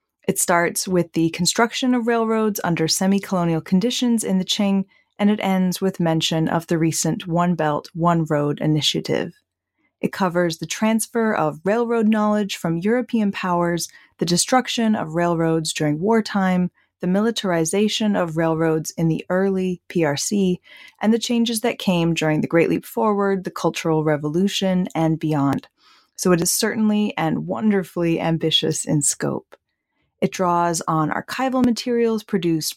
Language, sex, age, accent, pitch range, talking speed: English, female, 20-39, American, 165-215 Hz, 145 wpm